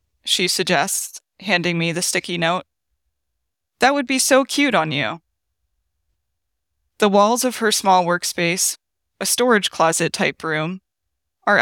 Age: 20-39